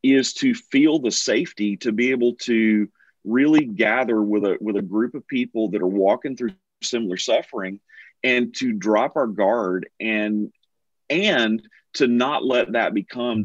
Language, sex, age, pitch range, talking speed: English, male, 40-59, 105-135 Hz, 160 wpm